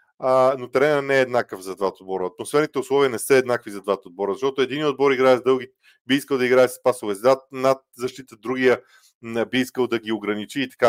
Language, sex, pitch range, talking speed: Bulgarian, male, 130-160 Hz, 215 wpm